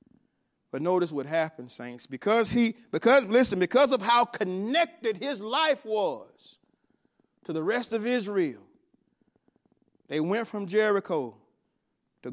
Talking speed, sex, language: 125 wpm, male, English